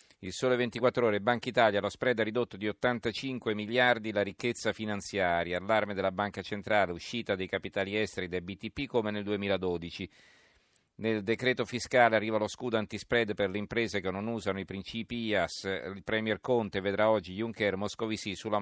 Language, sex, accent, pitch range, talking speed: Italian, male, native, 95-115 Hz, 170 wpm